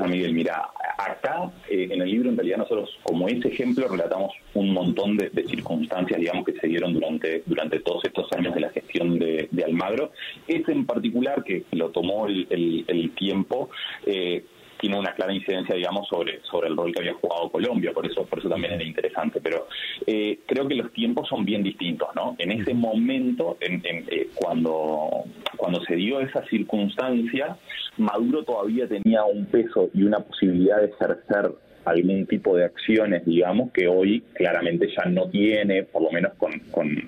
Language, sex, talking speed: Spanish, male, 185 wpm